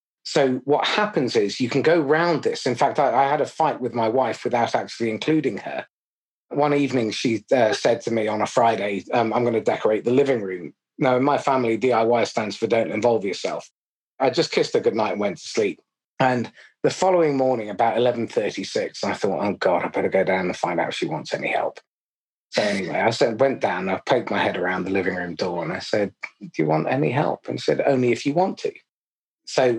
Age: 30-49